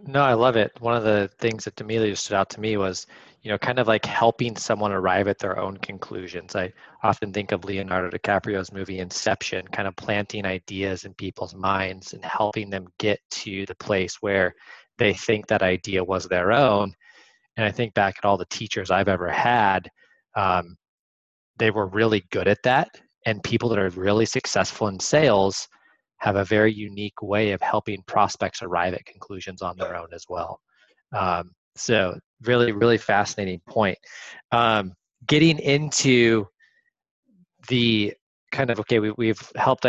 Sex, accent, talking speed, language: male, American, 170 wpm, English